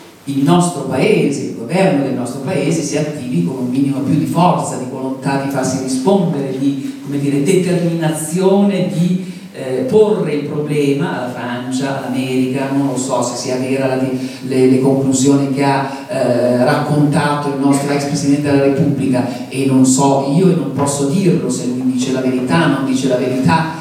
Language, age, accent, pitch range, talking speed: Italian, 50-69, native, 135-160 Hz, 170 wpm